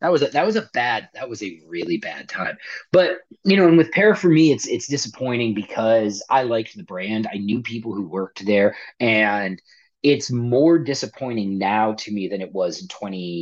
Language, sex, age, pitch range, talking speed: English, male, 30-49, 110-150 Hz, 215 wpm